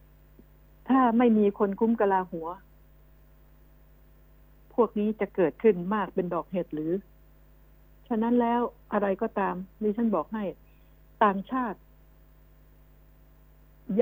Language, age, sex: Thai, 60-79, female